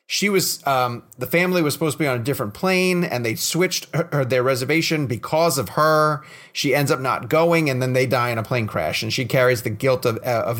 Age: 30-49